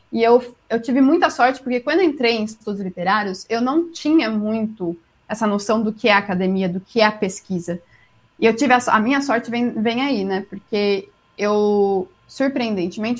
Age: 20-39